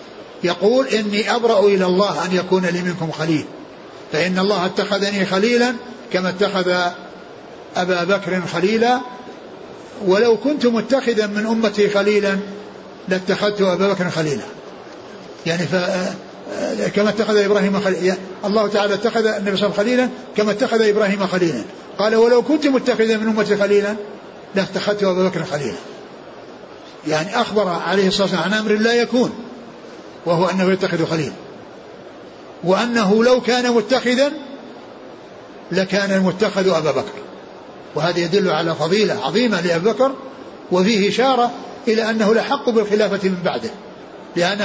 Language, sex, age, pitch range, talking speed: Arabic, male, 60-79, 185-230 Hz, 120 wpm